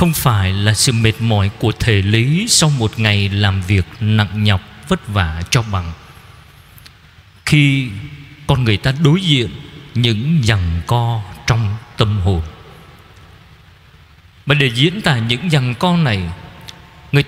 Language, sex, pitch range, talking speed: Vietnamese, male, 110-170 Hz, 140 wpm